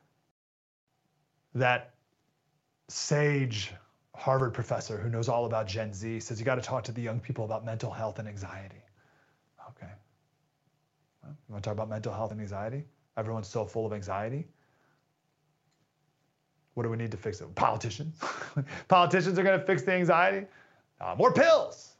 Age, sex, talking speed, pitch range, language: 30-49, male, 160 wpm, 110-150 Hz, English